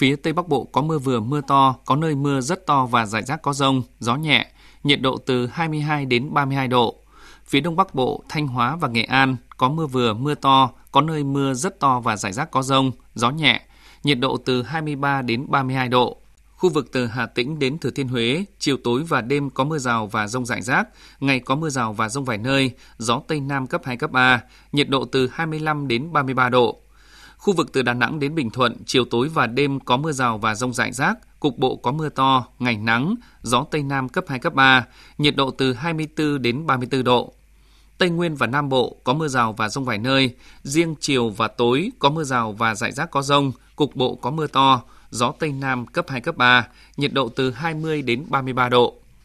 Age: 20-39